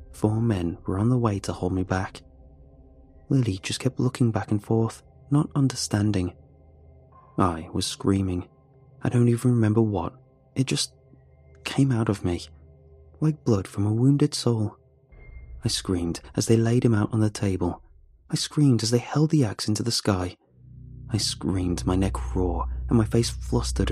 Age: 20-39